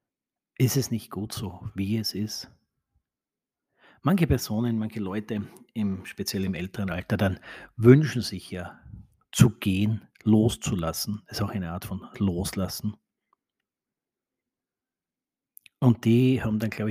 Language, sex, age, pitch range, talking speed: German, male, 40-59, 95-120 Hz, 125 wpm